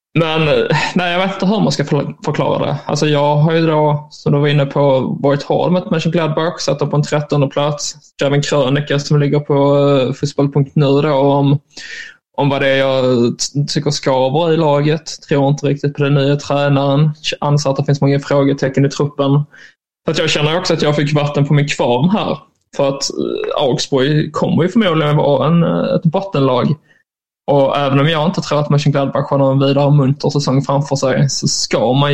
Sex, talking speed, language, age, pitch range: male, 185 wpm, Swedish, 20-39, 140-160 Hz